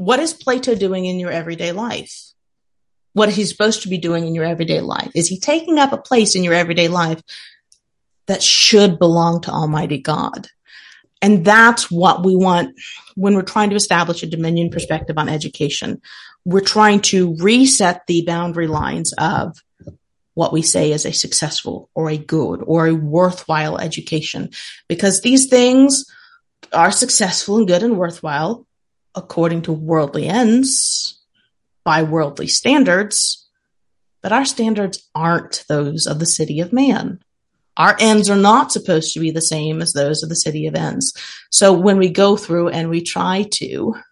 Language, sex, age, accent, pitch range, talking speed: English, female, 30-49, American, 165-225 Hz, 165 wpm